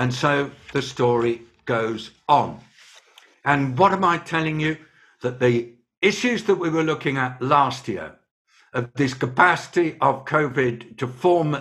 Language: English